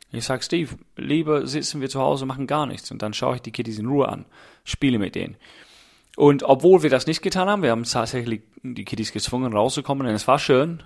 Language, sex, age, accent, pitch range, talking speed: German, male, 30-49, German, 110-140 Hz, 225 wpm